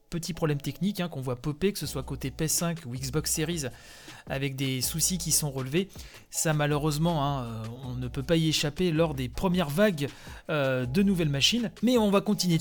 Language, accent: French, French